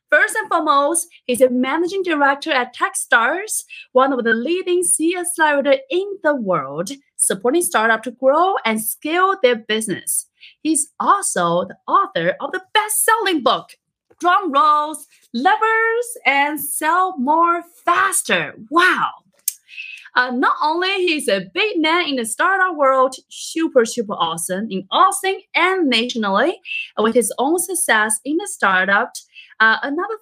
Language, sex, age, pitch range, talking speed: English, female, 30-49, 240-355 Hz, 135 wpm